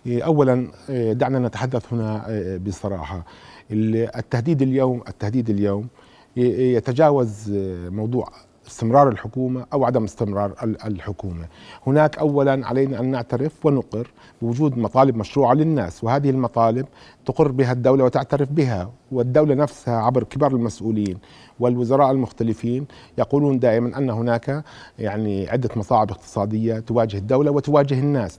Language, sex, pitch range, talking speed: Arabic, male, 110-140 Hz, 110 wpm